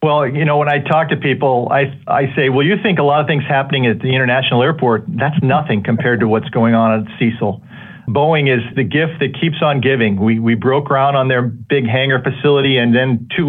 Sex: male